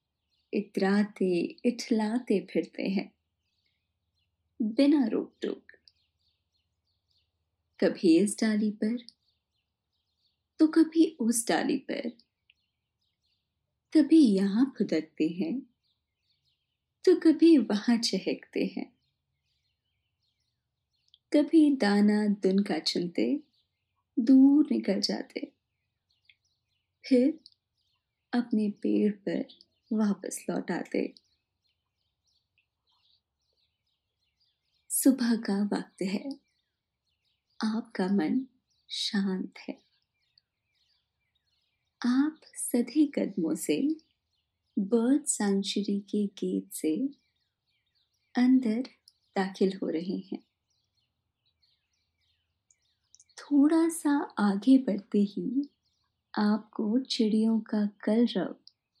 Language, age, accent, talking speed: Hindi, 20-39, native, 70 wpm